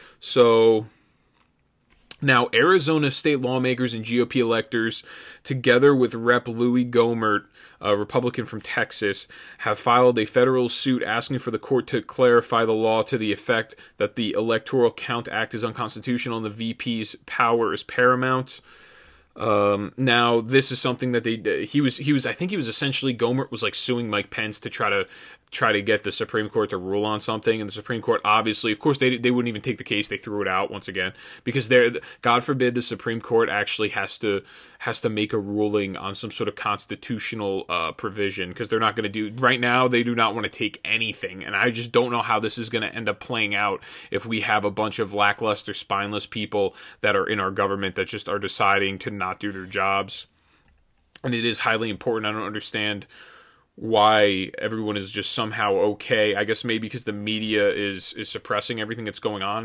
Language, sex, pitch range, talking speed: English, male, 105-120 Hz, 205 wpm